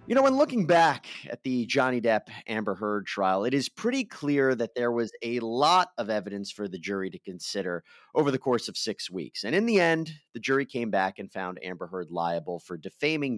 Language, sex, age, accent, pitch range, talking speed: English, male, 30-49, American, 100-150 Hz, 220 wpm